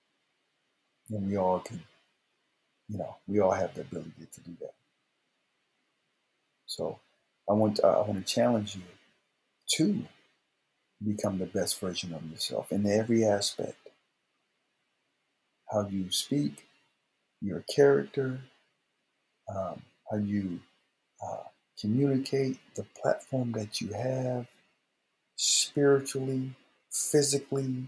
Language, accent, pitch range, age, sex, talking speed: English, American, 100-125 Hz, 50-69, male, 110 wpm